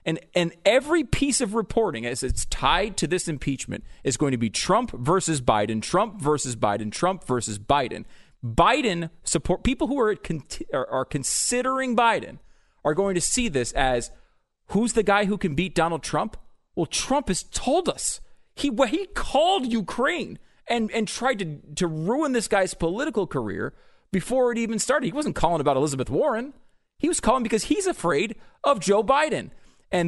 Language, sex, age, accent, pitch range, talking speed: English, male, 30-49, American, 145-225 Hz, 175 wpm